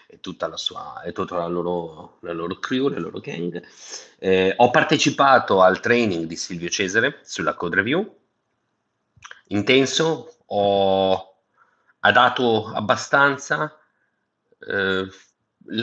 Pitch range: 95-140 Hz